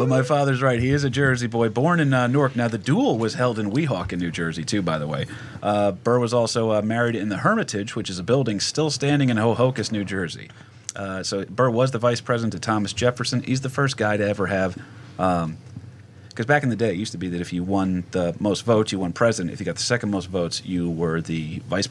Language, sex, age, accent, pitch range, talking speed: English, male, 30-49, American, 95-120 Hz, 265 wpm